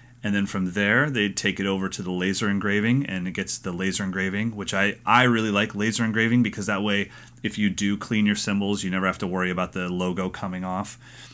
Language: English